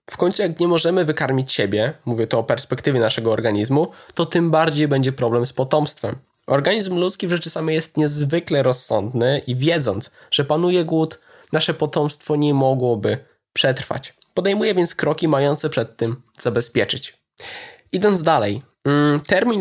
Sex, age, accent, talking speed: male, 20-39, native, 145 wpm